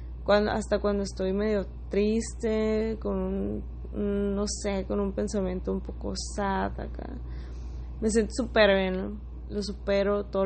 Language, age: English, 20-39